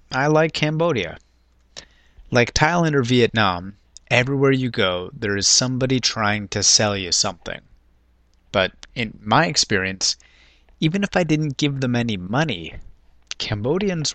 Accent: American